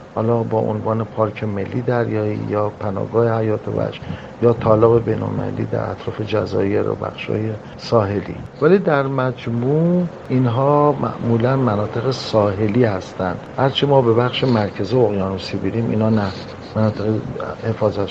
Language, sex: Persian, male